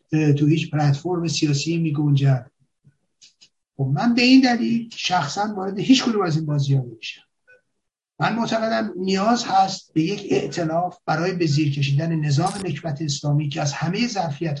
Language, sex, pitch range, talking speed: Persian, male, 150-215 Hz, 145 wpm